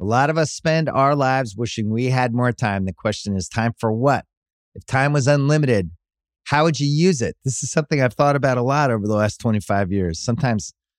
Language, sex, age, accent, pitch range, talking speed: English, male, 30-49, American, 95-130 Hz, 225 wpm